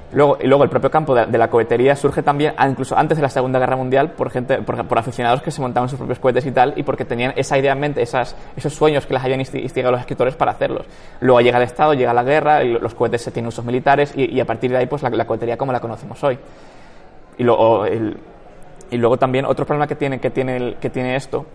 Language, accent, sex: Spanish, Spanish, male